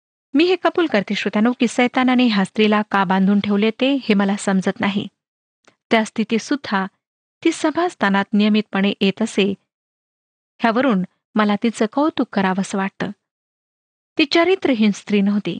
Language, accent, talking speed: Marathi, native, 140 wpm